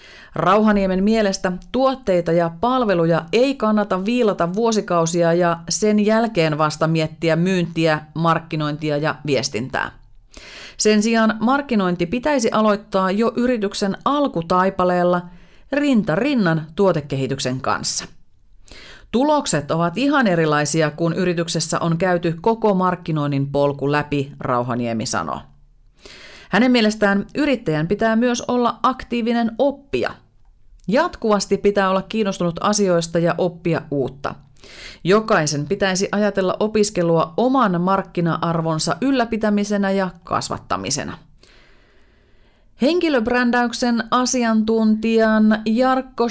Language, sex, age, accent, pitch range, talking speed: Finnish, female, 30-49, native, 170-230 Hz, 95 wpm